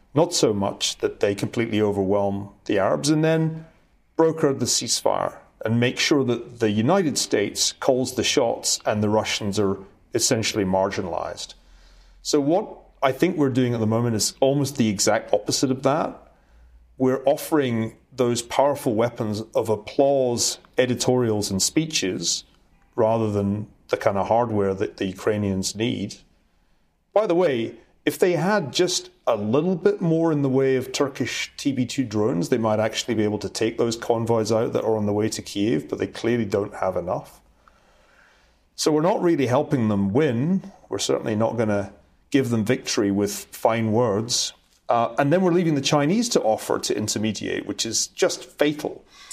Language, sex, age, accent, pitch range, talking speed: English, male, 40-59, British, 105-140 Hz, 170 wpm